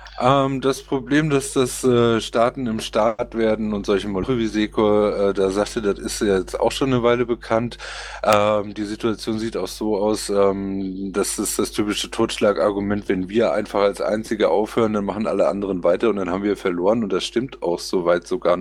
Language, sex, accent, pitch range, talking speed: German, male, German, 105-125 Hz, 200 wpm